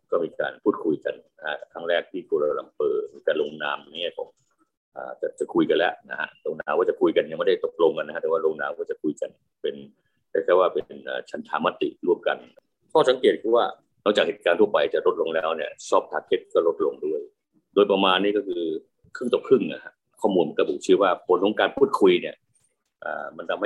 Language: Thai